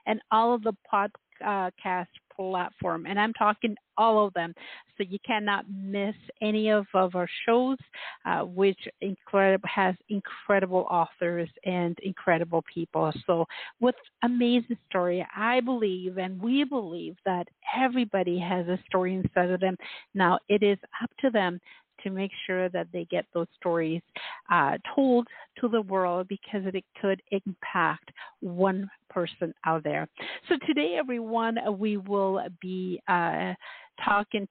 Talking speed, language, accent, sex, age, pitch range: 145 wpm, English, American, female, 50-69, 185-220 Hz